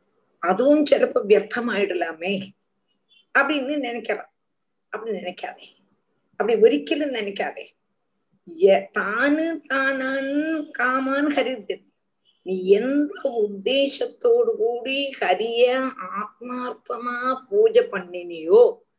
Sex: female